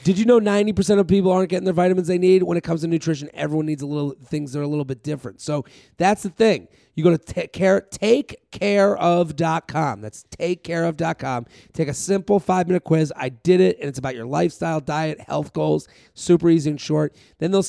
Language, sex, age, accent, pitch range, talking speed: English, male, 30-49, American, 145-180 Hz, 210 wpm